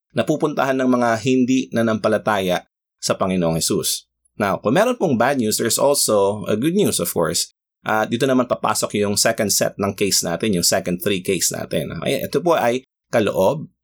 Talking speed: 180 wpm